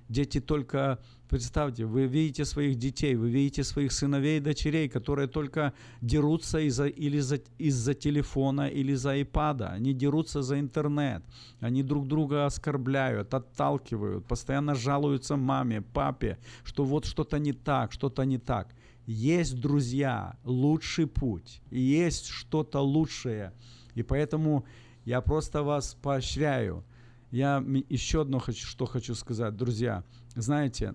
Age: 50-69